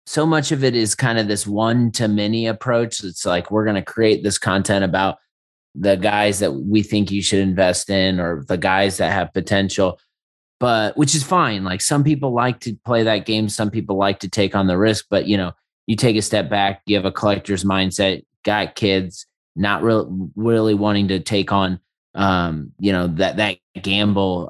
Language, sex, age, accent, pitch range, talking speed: English, male, 20-39, American, 95-115 Hz, 210 wpm